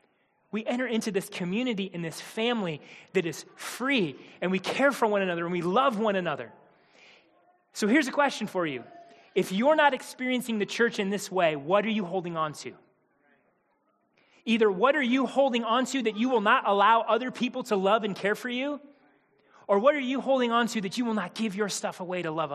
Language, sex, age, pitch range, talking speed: English, male, 30-49, 175-230 Hz, 215 wpm